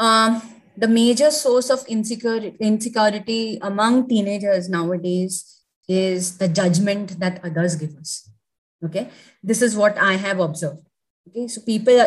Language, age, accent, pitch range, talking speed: English, 20-39, Indian, 185-235 Hz, 135 wpm